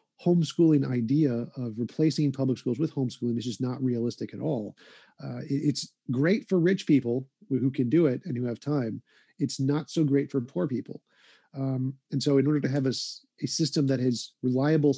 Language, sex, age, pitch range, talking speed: English, male, 40-59, 125-145 Hz, 200 wpm